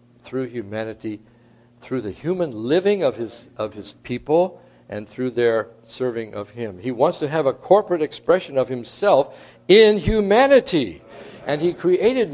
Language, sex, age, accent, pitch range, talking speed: English, male, 60-79, American, 120-175 Hz, 150 wpm